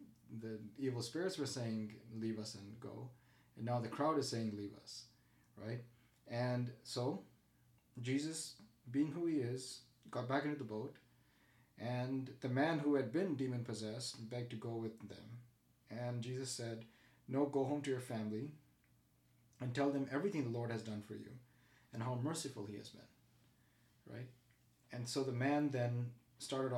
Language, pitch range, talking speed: English, 110-130 Hz, 165 wpm